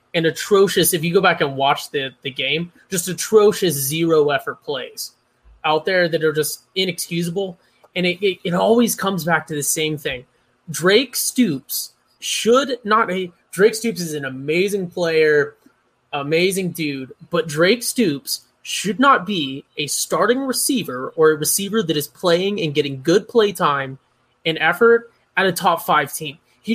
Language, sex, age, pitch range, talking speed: English, male, 20-39, 150-200 Hz, 160 wpm